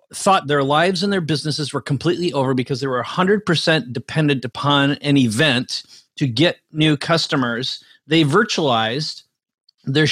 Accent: American